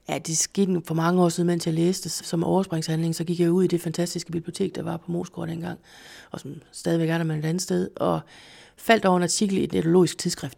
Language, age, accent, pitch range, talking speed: Danish, 30-49, native, 165-200 Hz, 245 wpm